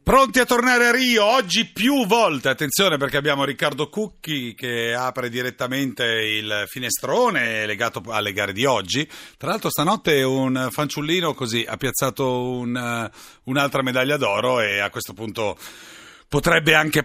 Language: Italian